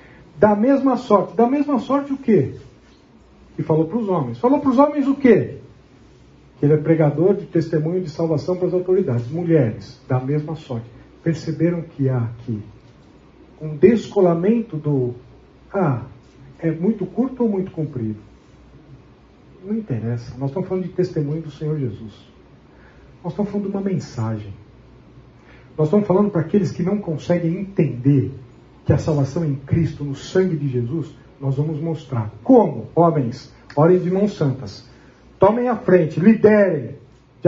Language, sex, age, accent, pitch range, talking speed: Portuguese, male, 40-59, Brazilian, 130-190 Hz, 155 wpm